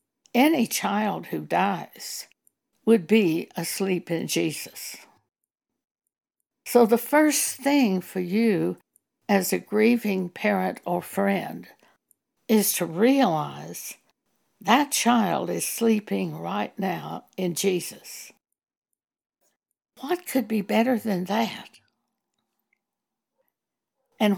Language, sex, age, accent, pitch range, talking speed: English, female, 60-79, American, 175-240 Hz, 95 wpm